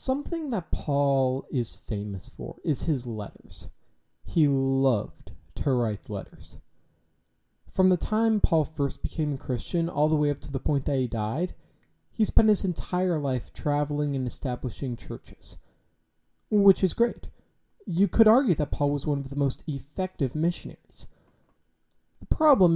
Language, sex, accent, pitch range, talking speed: English, male, American, 125-175 Hz, 155 wpm